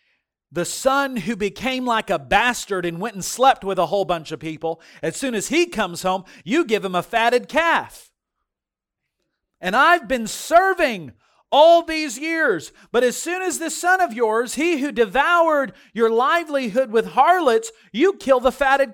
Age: 40-59